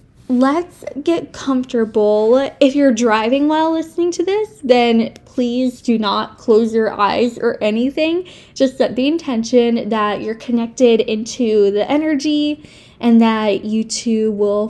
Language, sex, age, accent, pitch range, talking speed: English, female, 10-29, American, 225-275 Hz, 140 wpm